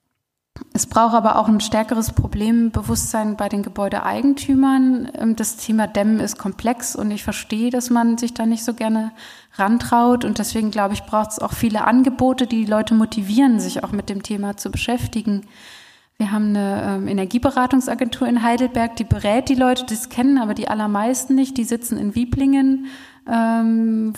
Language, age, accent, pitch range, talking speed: German, 20-39, German, 215-245 Hz, 165 wpm